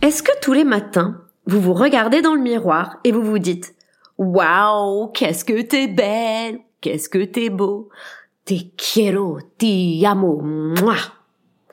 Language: French